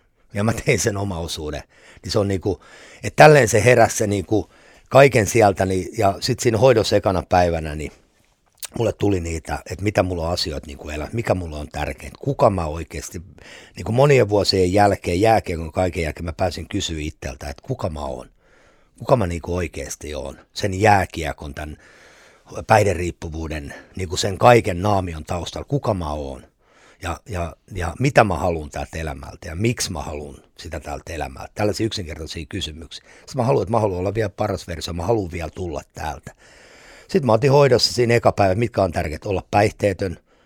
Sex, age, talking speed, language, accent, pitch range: male, 60-79, 180 wpm, Finnish, native, 80-105 Hz